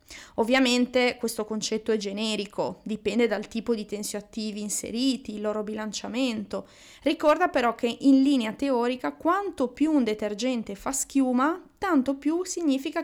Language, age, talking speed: Italian, 20-39, 135 wpm